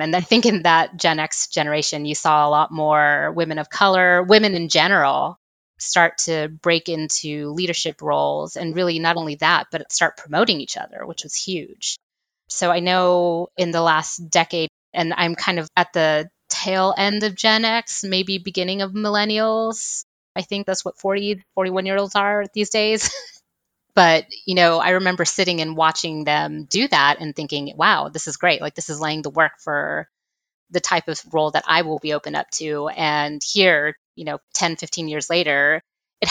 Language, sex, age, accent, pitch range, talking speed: English, female, 20-39, American, 155-185 Hz, 185 wpm